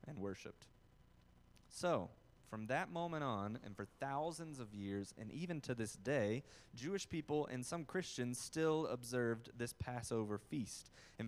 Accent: American